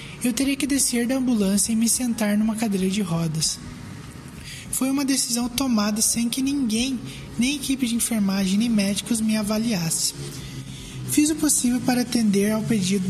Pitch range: 190-235 Hz